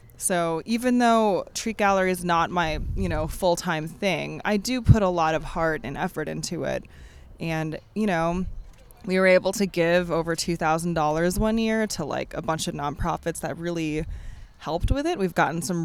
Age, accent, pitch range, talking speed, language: 20-39, American, 160-185 Hz, 185 wpm, English